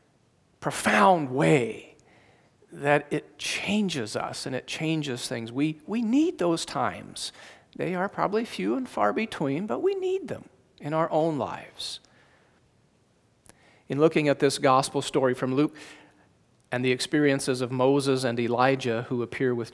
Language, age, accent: English, 40-59, American